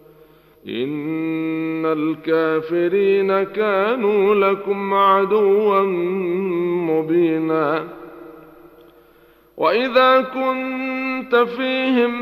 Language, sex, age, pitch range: Arabic, male, 50-69, 155-210 Hz